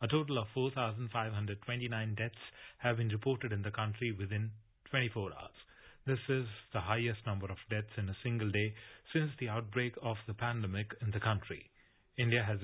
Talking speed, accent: 170 wpm, Indian